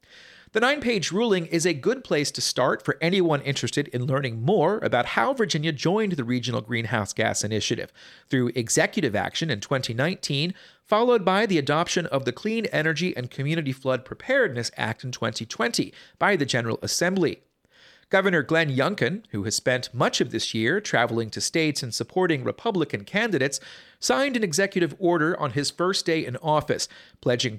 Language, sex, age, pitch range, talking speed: English, male, 40-59, 125-175 Hz, 165 wpm